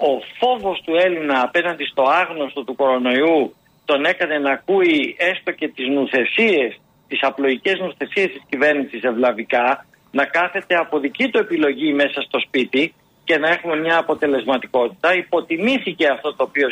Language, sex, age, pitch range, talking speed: Greek, male, 50-69, 140-205 Hz, 145 wpm